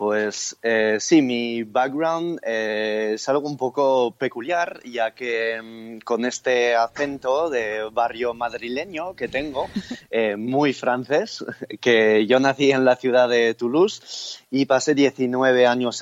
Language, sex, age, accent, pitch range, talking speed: Spanish, male, 20-39, Spanish, 110-135 Hz, 140 wpm